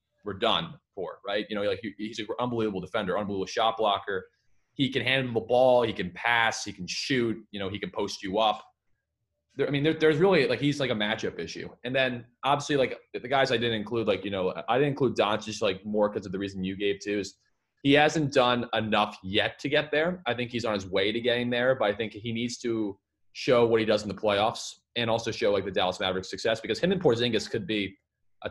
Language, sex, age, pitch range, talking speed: English, male, 20-39, 100-120 Hz, 245 wpm